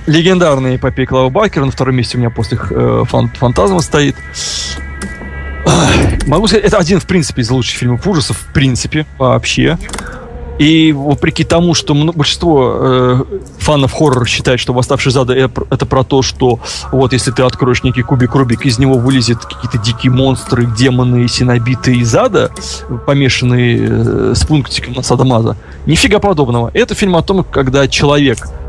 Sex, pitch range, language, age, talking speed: male, 120-145 Hz, Russian, 30-49, 155 wpm